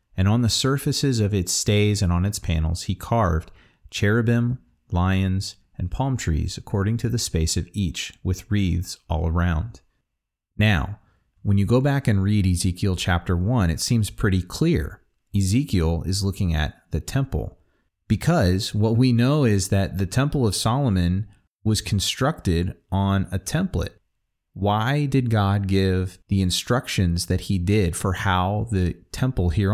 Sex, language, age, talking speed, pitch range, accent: male, English, 30-49, 155 wpm, 90-110 Hz, American